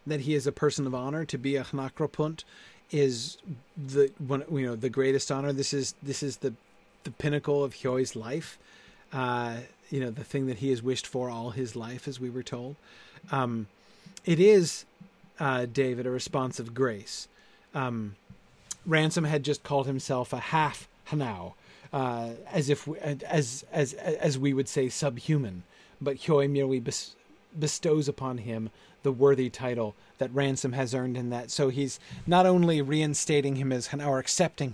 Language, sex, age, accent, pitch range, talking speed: English, male, 30-49, American, 125-145 Hz, 175 wpm